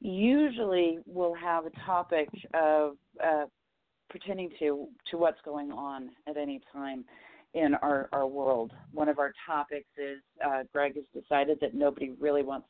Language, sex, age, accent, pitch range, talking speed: English, female, 40-59, American, 145-185 Hz, 155 wpm